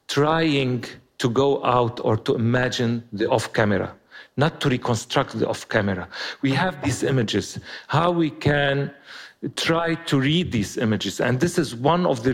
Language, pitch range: English, 120-145 Hz